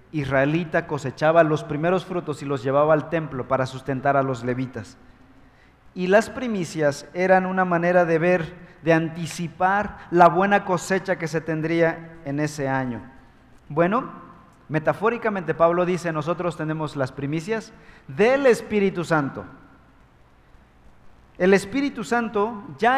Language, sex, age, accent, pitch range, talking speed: Spanish, male, 40-59, Mexican, 145-200 Hz, 130 wpm